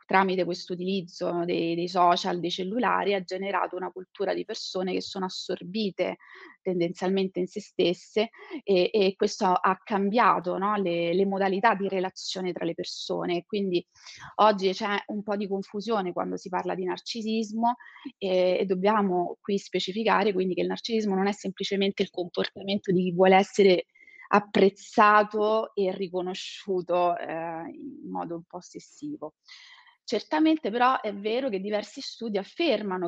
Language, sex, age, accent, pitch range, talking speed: Italian, female, 30-49, native, 180-210 Hz, 145 wpm